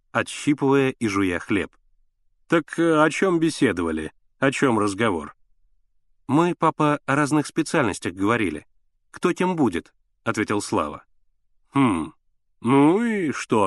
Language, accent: Russian, native